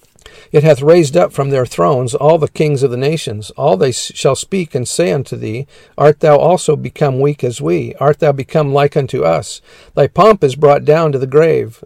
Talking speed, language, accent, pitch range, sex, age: 215 wpm, English, American, 130-155 Hz, male, 50-69